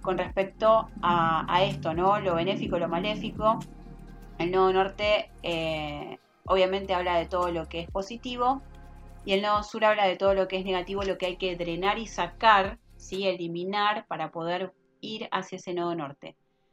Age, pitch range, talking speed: 20-39, 170-220 Hz, 170 wpm